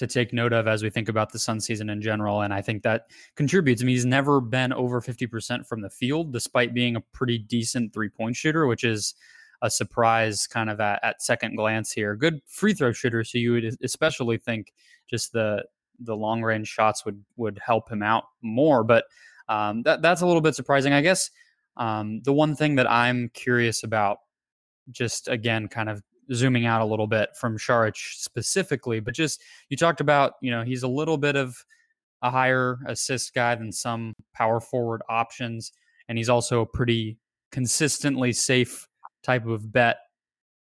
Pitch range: 115-130 Hz